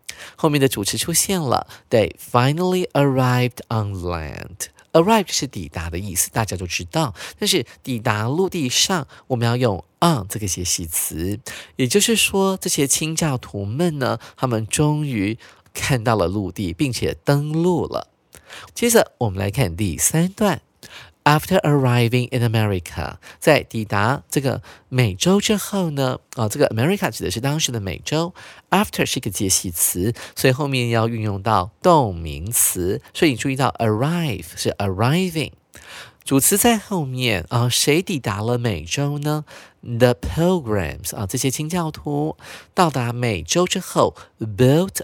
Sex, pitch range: male, 105-160 Hz